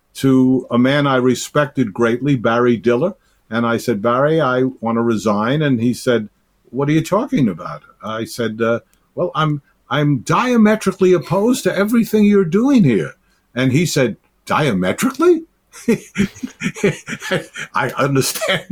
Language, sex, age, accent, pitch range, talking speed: English, male, 60-79, American, 120-165 Hz, 140 wpm